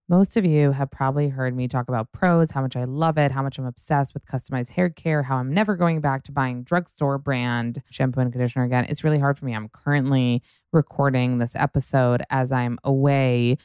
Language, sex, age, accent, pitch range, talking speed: English, female, 20-39, American, 125-150 Hz, 215 wpm